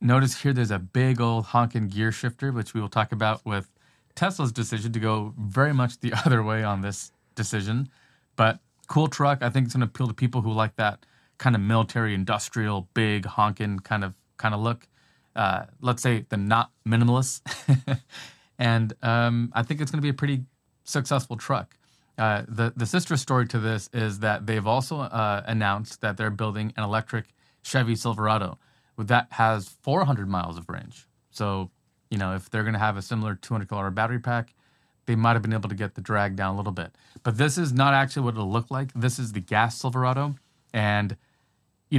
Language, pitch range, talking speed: English, 105-130 Hz, 195 wpm